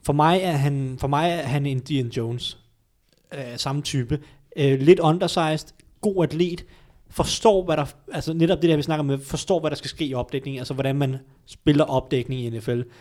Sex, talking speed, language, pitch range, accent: male, 180 wpm, Danish, 125-155 Hz, native